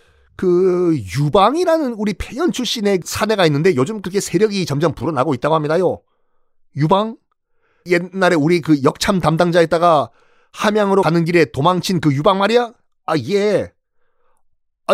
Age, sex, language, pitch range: 40-59, male, Korean, 155-215 Hz